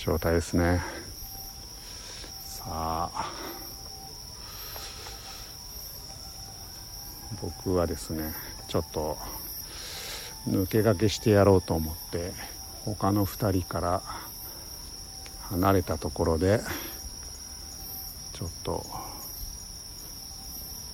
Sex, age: male, 60-79